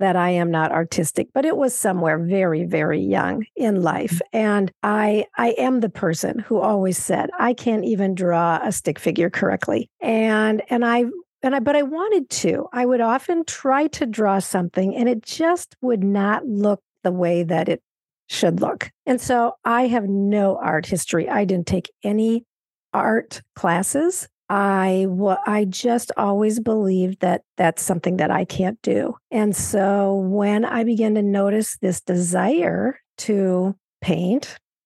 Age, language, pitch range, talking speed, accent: 50-69, English, 185-235 Hz, 165 wpm, American